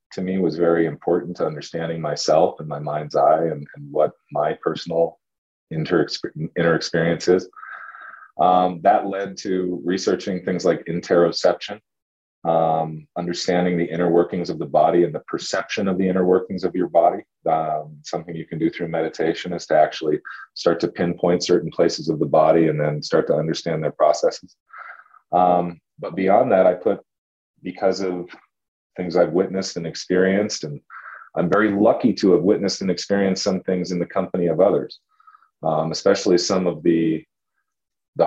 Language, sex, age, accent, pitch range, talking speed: English, male, 30-49, American, 80-95 Hz, 165 wpm